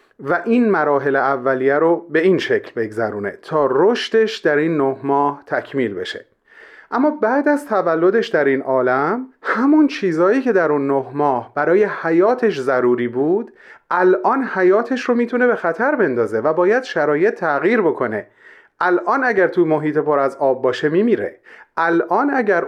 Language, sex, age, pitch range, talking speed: Persian, male, 30-49, 145-240 Hz, 150 wpm